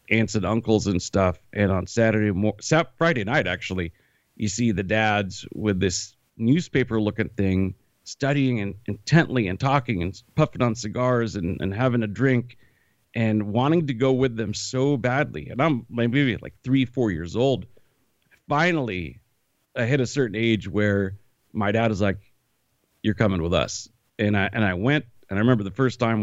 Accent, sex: American, male